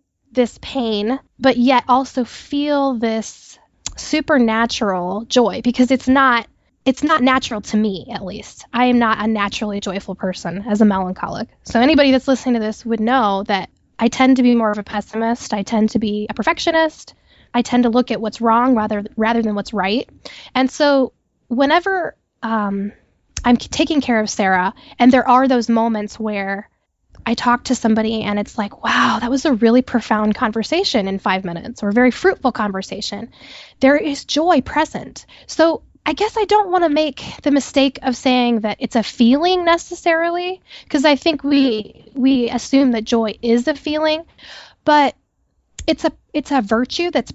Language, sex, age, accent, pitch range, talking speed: English, female, 10-29, American, 220-280 Hz, 175 wpm